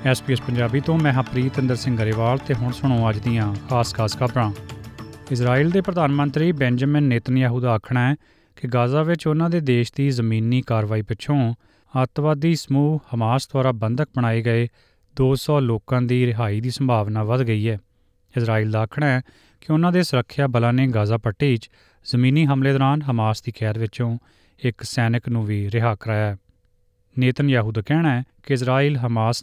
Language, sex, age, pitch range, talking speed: Punjabi, male, 30-49, 110-135 Hz, 165 wpm